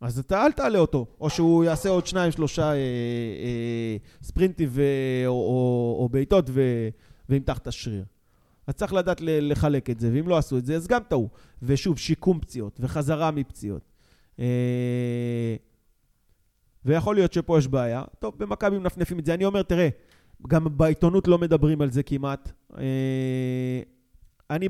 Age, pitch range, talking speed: 20-39, 120-165 Hz, 160 wpm